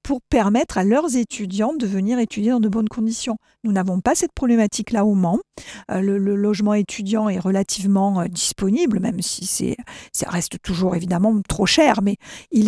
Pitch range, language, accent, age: 200-245 Hz, French, French, 50-69